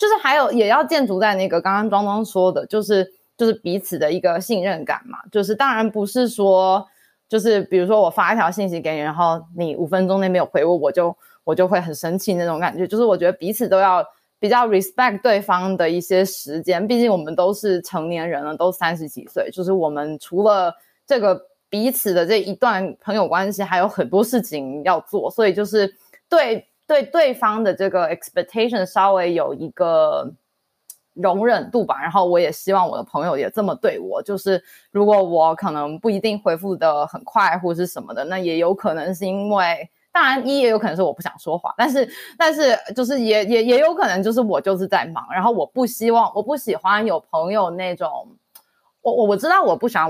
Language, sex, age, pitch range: Chinese, female, 20-39, 175-230 Hz